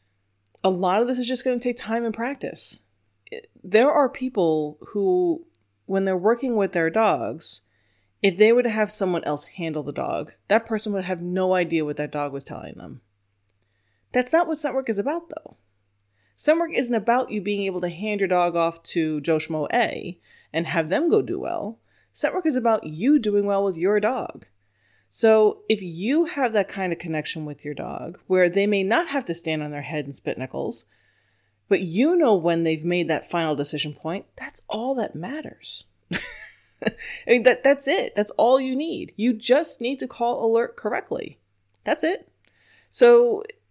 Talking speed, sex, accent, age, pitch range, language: 190 wpm, female, American, 20-39, 155-225 Hz, English